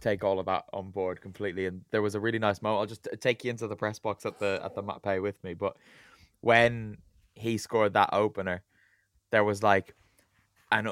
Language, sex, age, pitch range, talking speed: English, male, 20-39, 100-125 Hz, 220 wpm